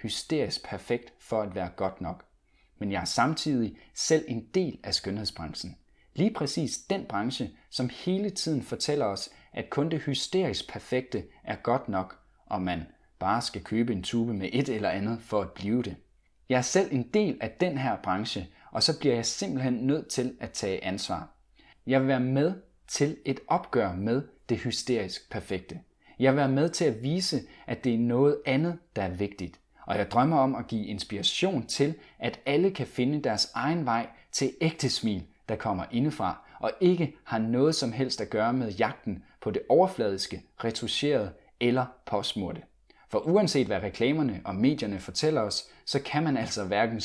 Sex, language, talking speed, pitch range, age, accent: male, Danish, 180 wpm, 110-150 Hz, 30-49, native